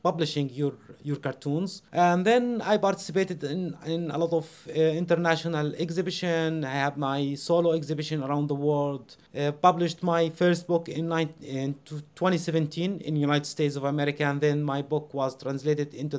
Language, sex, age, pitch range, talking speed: English, male, 30-49, 150-175 Hz, 165 wpm